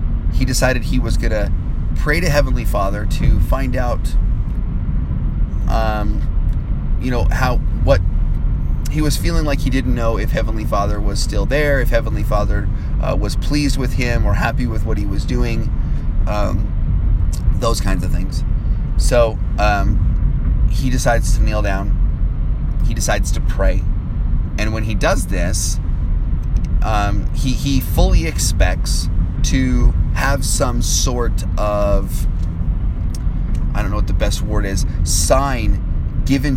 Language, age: English, 30-49